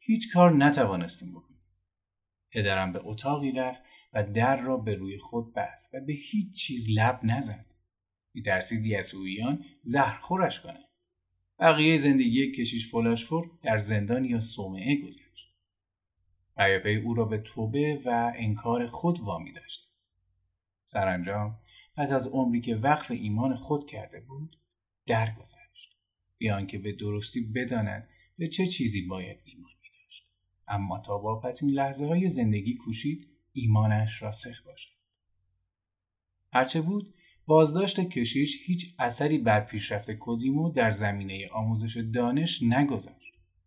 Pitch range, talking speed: 100-145 Hz, 130 wpm